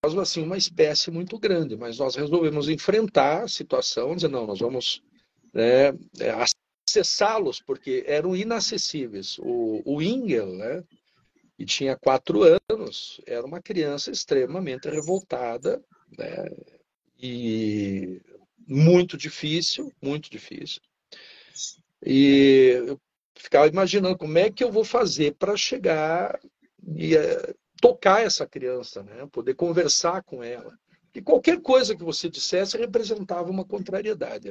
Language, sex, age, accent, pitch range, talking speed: Portuguese, male, 50-69, Brazilian, 145-220 Hz, 120 wpm